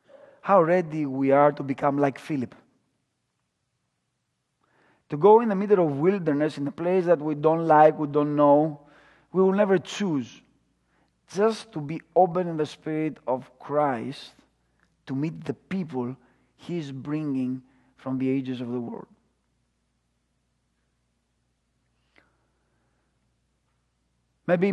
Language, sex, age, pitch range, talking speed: English, male, 40-59, 135-165 Hz, 125 wpm